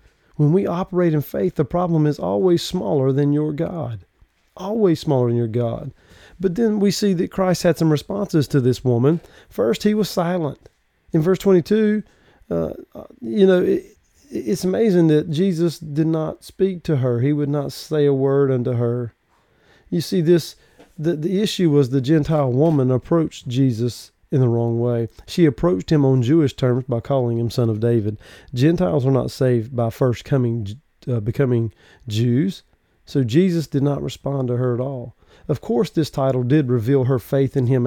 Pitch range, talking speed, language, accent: 120-165 Hz, 180 wpm, English, American